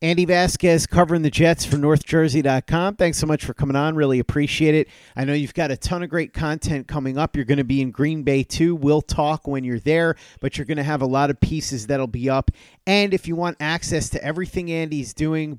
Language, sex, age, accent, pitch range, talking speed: English, male, 30-49, American, 135-170 Hz, 235 wpm